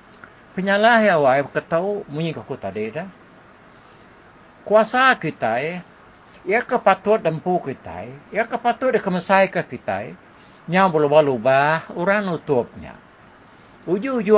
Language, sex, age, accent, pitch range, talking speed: English, male, 60-79, Indonesian, 150-205 Hz, 90 wpm